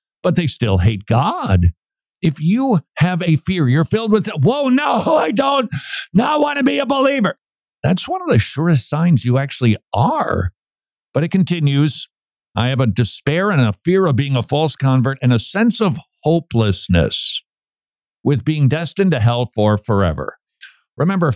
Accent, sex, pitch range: American, male, 120-175 Hz